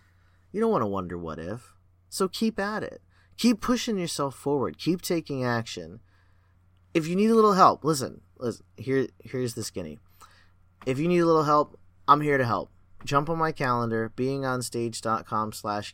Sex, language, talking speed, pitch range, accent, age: male, English, 175 wpm, 95-140 Hz, American, 30-49